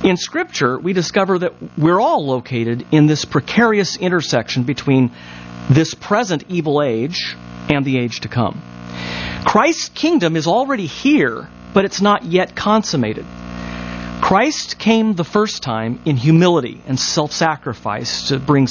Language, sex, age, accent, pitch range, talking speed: English, male, 40-59, American, 110-175 Hz, 140 wpm